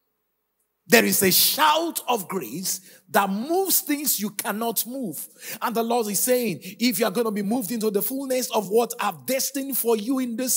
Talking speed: 200 wpm